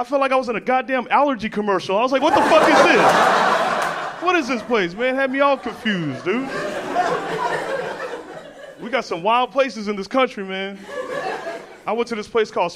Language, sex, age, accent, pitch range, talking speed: English, male, 30-49, American, 220-275 Hz, 200 wpm